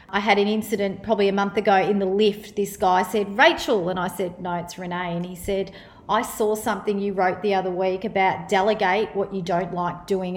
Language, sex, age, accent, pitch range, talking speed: English, female, 40-59, Australian, 195-225 Hz, 225 wpm